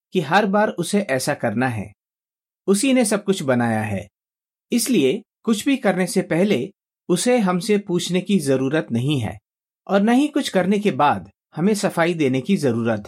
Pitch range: 135-210 Hz